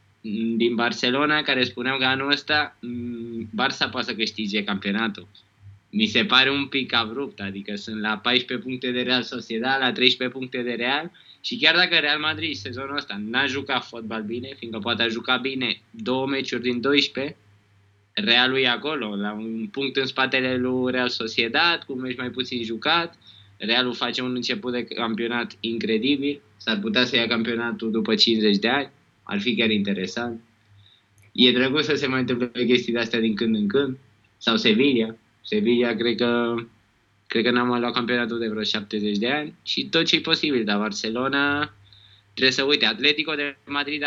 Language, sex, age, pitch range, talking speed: Romanian, male, 20-39, 110-135 Hz, 175 wpm